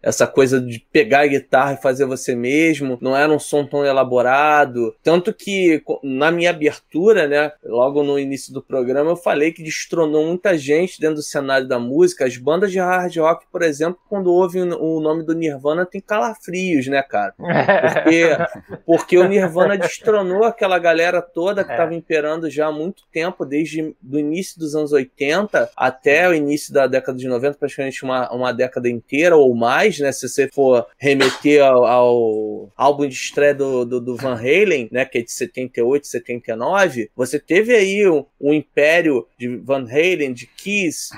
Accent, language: Brazilian, Portuguese